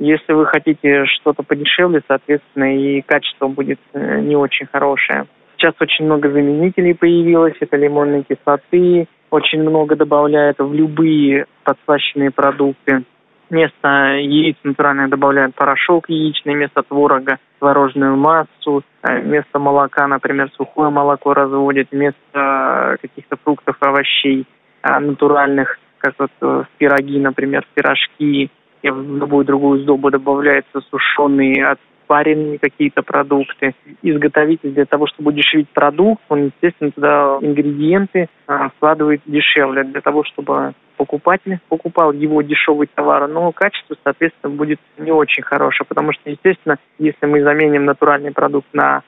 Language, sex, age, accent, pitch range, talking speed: Russian, male, 20-39, native, 140-155 Hz, 125 wpm